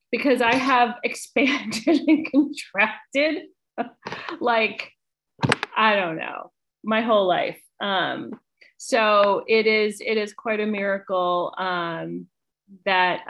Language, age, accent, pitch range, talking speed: English, 30-49, American, 185-245 Hz, 110 wpm